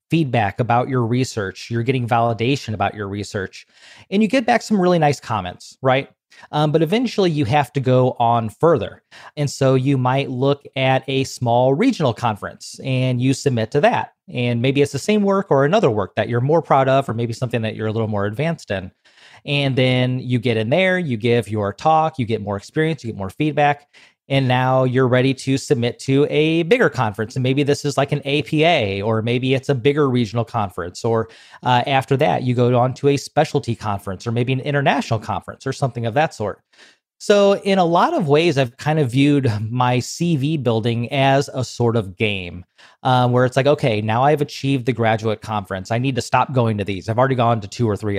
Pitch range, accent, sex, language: 115-145 Hz, American, male, English